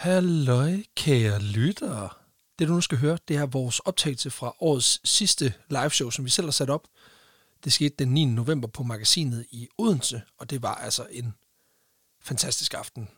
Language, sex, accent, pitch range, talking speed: Danish, male, native, 125-155 Hz, 175 wpm